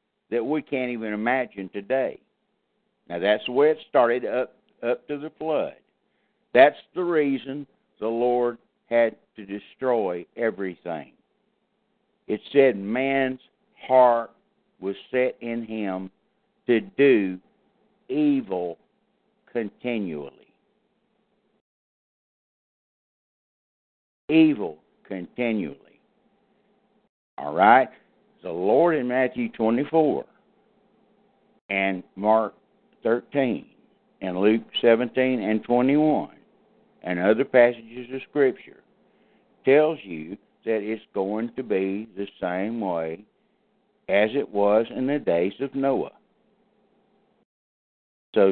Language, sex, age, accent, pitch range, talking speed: English, male, 60-79, American, 105-145 Hz, 95 wpm